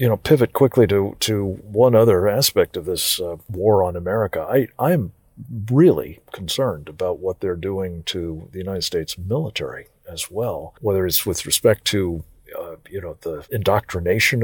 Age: 50-69